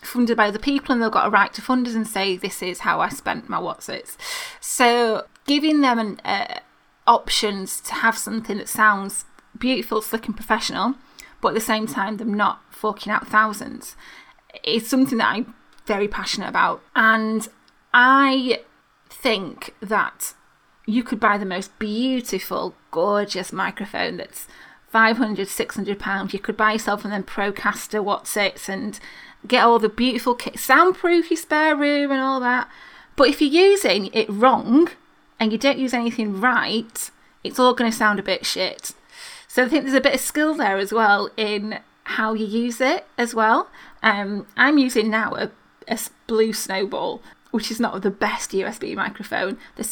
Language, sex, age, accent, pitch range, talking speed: English, female, 20-39, British, 210-260 Hz, 175 wpm